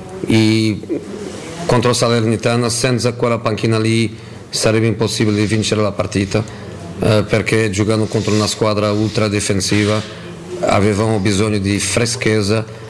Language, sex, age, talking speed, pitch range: Italian, male, 40-59, 105 wpm, 105-115 Hz